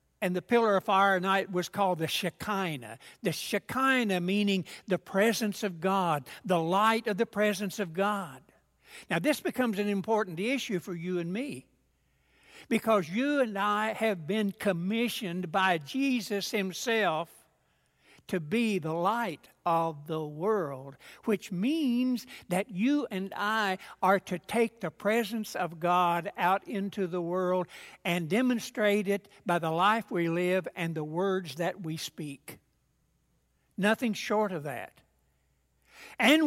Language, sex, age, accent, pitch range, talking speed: English, male, 60-79, American, 180-230 Hz, 145 wpm